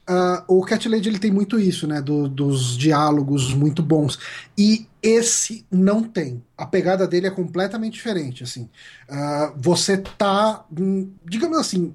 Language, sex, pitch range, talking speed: Portuguese, male, 155-215 Hz, 150 wpm